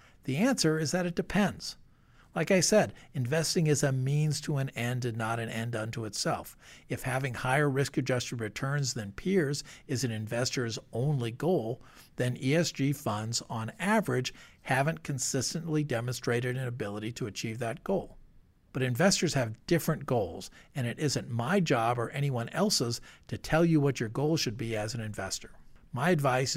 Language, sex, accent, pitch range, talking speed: English, male, American, 115-150 Hz, 170 wpm